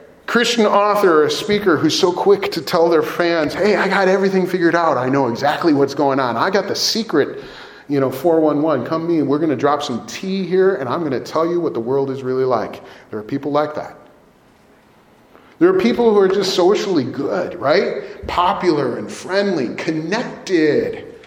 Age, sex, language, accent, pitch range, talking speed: 40-59, male, English, American, 130-185 Hz, 200 wpm